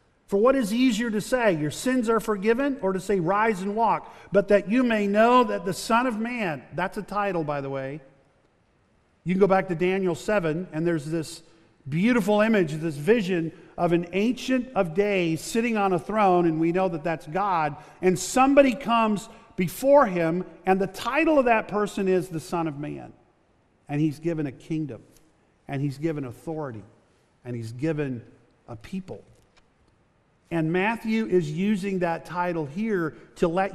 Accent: American